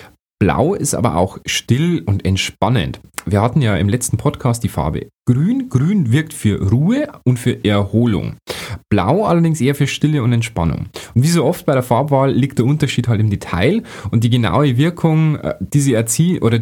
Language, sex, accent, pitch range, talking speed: German, male, German, 105-145 Hz, 180 wpm